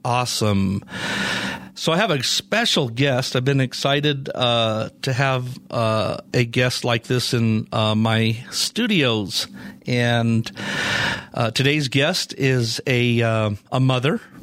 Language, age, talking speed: English, 50-69, 130 wpm